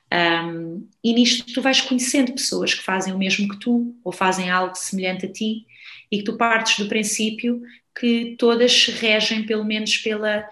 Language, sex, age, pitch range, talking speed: Portuguese, female, 20-39, 170-215 Hz, 185 wpm